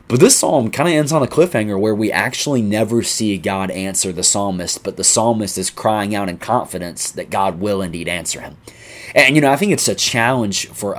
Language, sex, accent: English, male, American